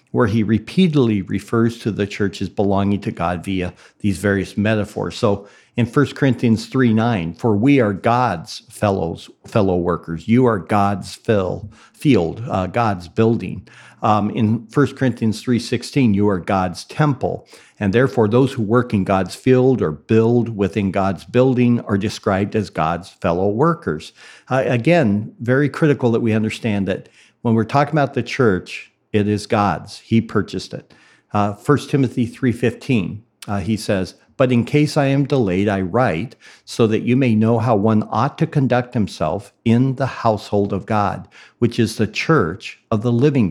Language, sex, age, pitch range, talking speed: English, male, 50-69, 100-125 Hz, 165 wpm